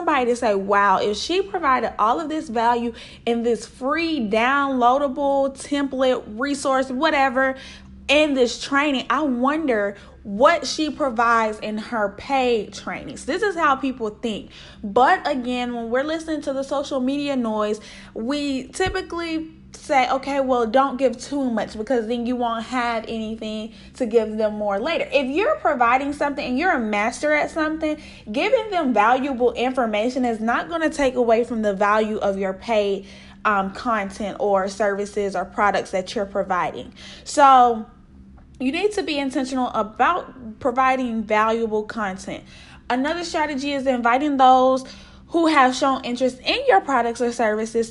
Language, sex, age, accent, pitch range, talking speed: English, female, 10-29, American, 225-285 Hz, 155 wpm